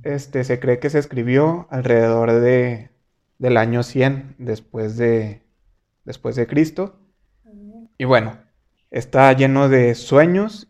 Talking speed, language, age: 125 wpm, Spanish, 20-39